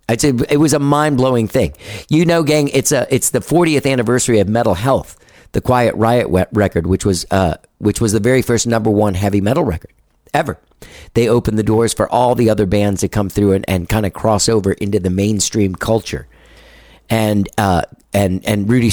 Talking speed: 205 wpm